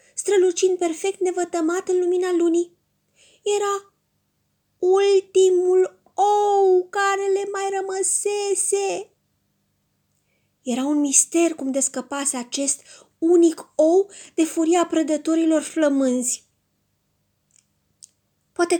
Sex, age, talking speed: female, 20-39, 85 wpm